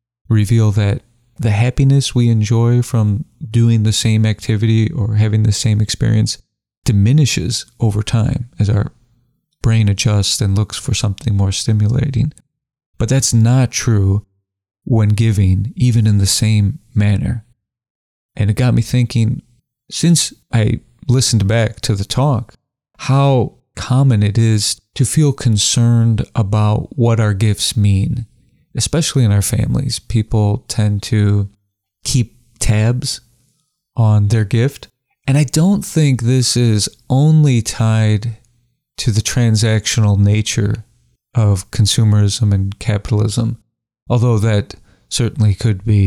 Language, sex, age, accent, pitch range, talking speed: English, male, 40-59, American, 105-120 Hz, 125 wpm